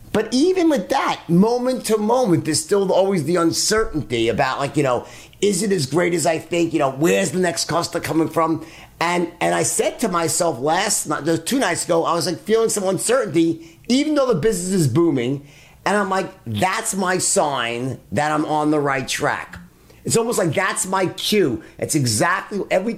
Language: English